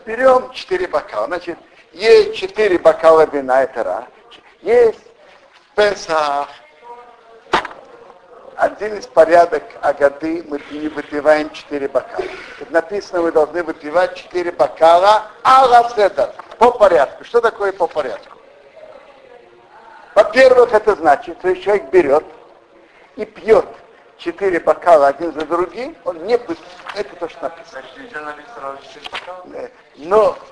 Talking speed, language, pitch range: 110 wpm, Russian, 165-245 Hz